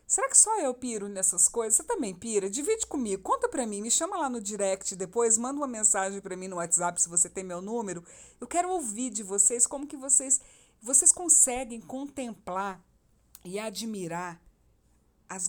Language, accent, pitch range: Portuguese, Brazilian, 185-245 Hz